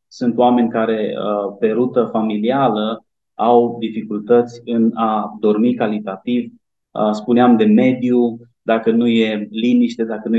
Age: 30-49